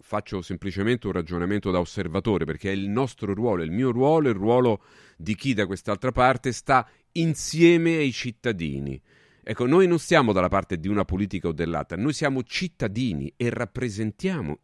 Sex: male